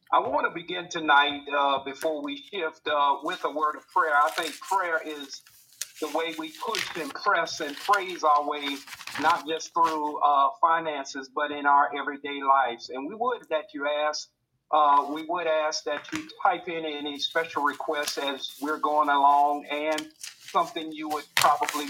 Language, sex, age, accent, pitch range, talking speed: English, male, 50-69, American, 145-175 Hz, 175 wpm